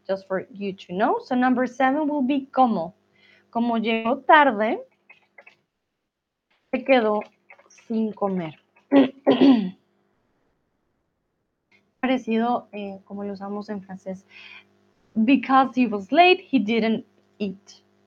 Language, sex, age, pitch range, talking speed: Spanish, female, 20-39, 210-265 Hz, 105 wpm